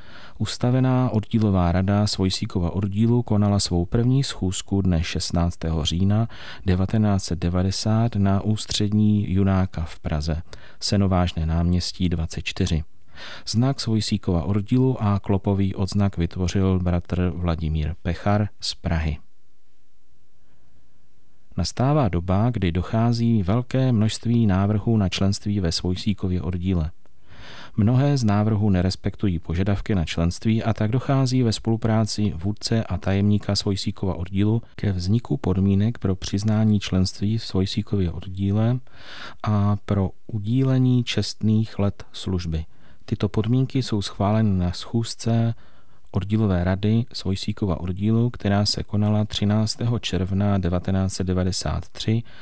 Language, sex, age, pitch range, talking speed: Czech, male, 40-59, 90-110 Hz, 105 wpm